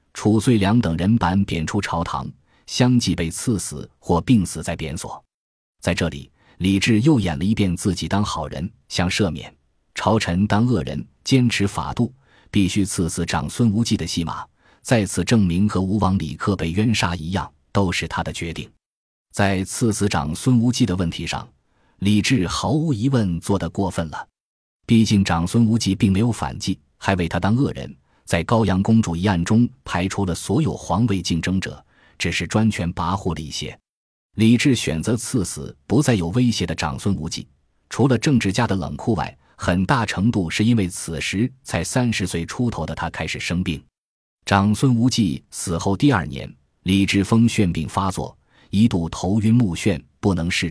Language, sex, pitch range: Chinese, male, 85-115 Hz